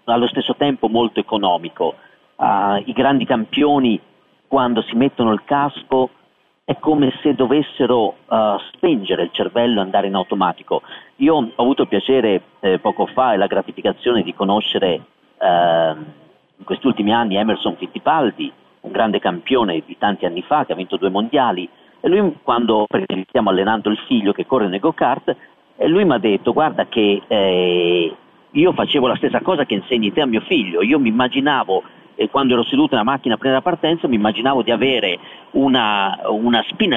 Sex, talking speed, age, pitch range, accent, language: male, 175 wpm, 40-59, 110-155 Hz, native, Italian